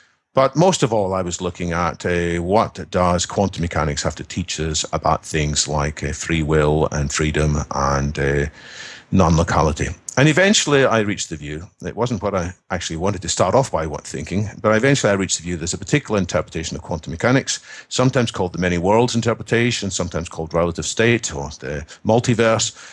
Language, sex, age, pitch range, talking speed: English, male, 50-69, 85-115 Hz, 190 wpm